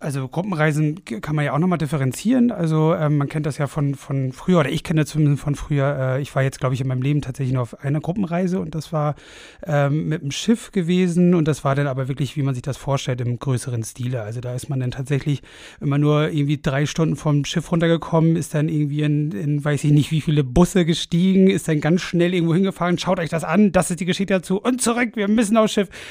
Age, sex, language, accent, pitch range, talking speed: 30-49, male, German, German, 140-170 Hz, 250 wpm